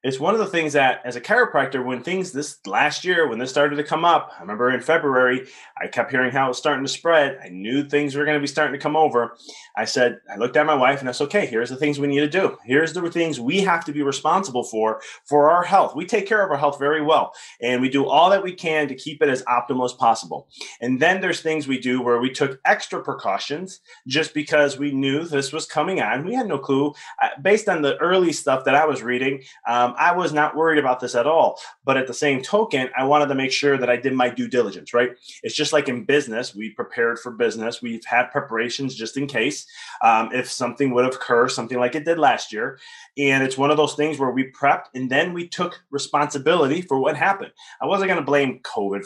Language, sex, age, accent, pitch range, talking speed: English, male, 30-49, American, 125-155 Hz, 250 wpm